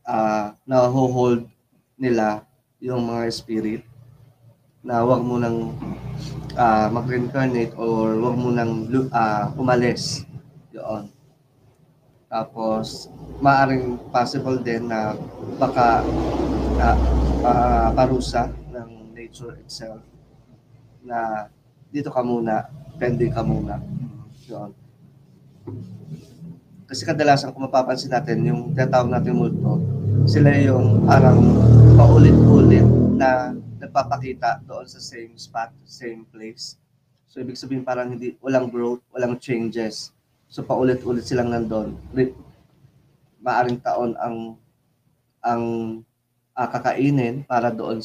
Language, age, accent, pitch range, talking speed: English, 20-39, Filipino, 115-130 Hz, 100 wpm